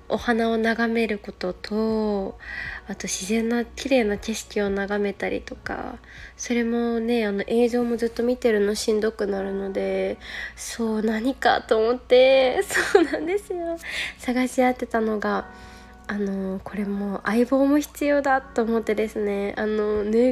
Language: Japanese